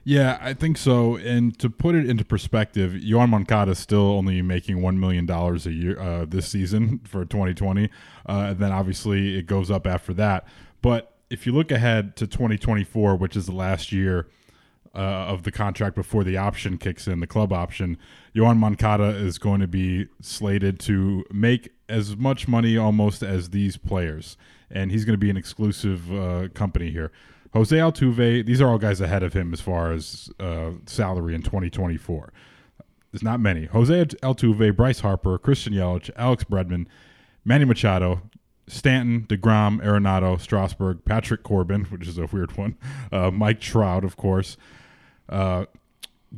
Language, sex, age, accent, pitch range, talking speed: English, male, 20-39, American, 95-115 Hz, 165 wpm